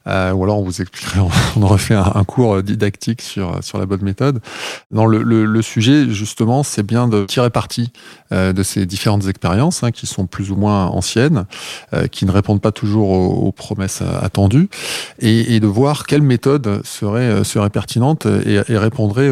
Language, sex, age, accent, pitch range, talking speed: French, male, 20-39, French, 100-125 Hz, 190 wpm